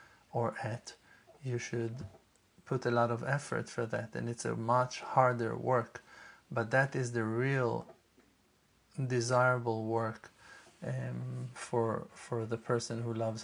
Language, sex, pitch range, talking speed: English, male, 120-135 Hz, 140 wpm